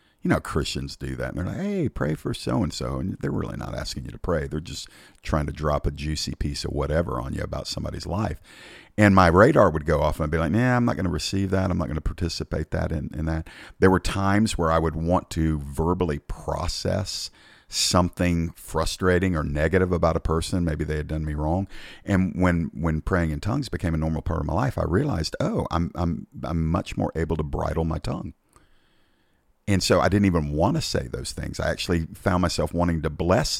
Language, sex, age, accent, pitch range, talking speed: English, male, 50-69, American, 80-95 Hz, 225 wpm